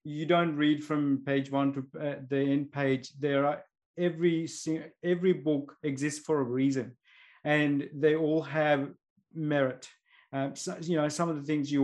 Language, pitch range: English, 140-160 Hz